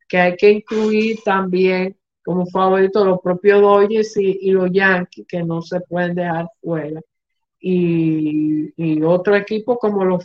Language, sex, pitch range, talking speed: Spanish, male, 180-225 Hz, 150 wpm